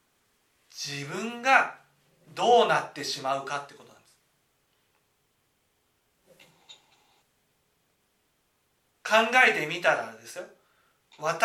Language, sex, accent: Japanese, male, native